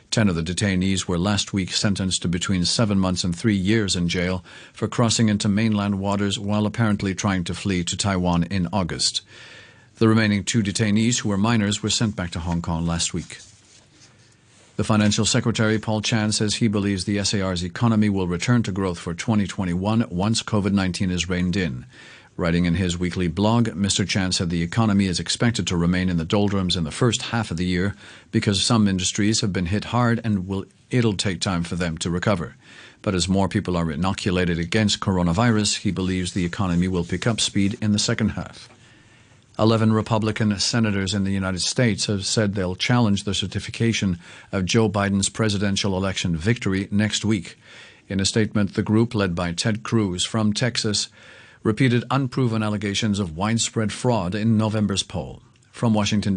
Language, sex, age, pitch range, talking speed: English, male, 50-69, 95-110 Hz, 180 wpm